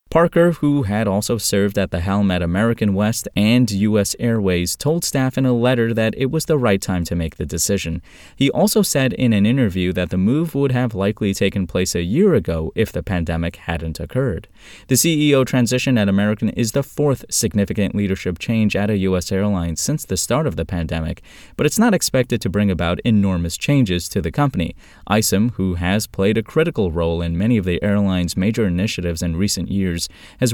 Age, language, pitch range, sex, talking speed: 20-39, English, 90-125 Hz, male, 200 wpm